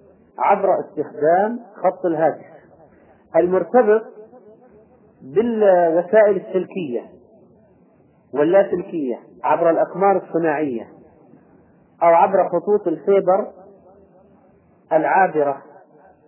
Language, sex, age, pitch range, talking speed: Arabic, male, 40-59, 150-190 Hz, 65 wpm